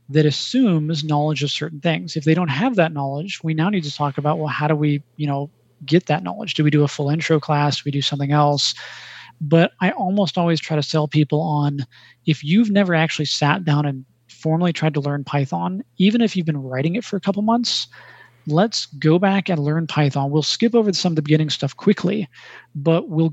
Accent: American